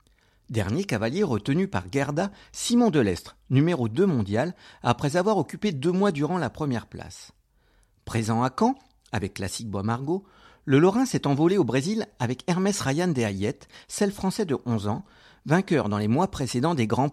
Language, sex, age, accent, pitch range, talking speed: French, male, 50-69, French, 105-170 Hz, 170 wpm